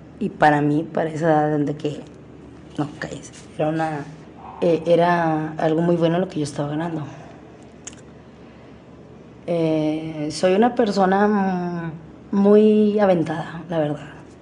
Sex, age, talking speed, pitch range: female, 30-49, 110 wpm, 145-170 Hz